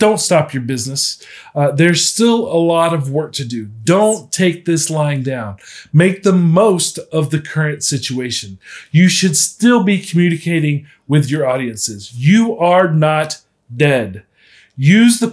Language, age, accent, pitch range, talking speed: English, 40-59, American, 140-185 Hz, 155 wpm